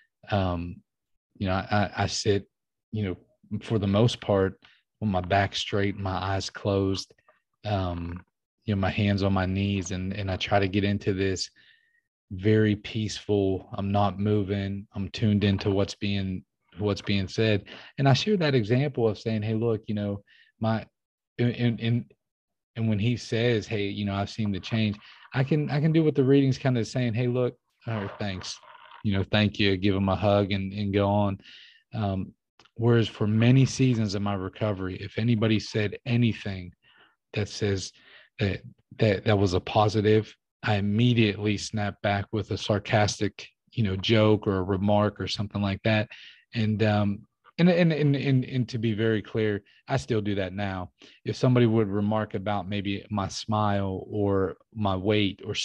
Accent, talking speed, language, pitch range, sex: American, 180 wpm, English, 100-115 Hz, male